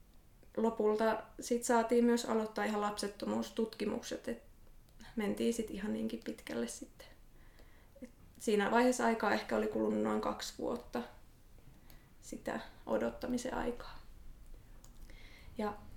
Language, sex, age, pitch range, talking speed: Finnish, female, 20-39, 210-240 Hz, 100 wpm